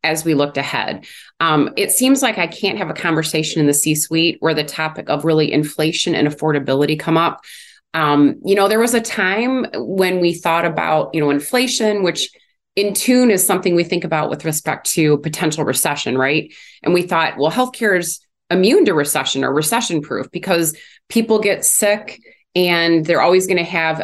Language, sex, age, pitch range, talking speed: English, female, 30-49, 150-195 Hz, 185 wpm